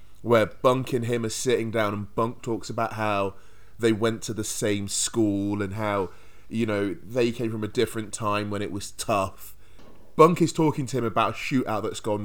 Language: English